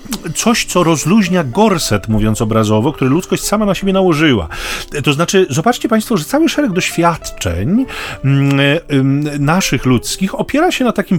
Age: 40-59